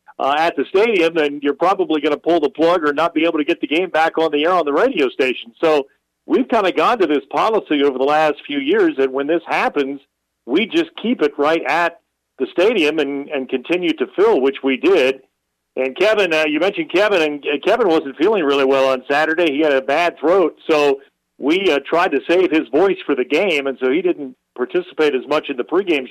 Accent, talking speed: American, 230 wpm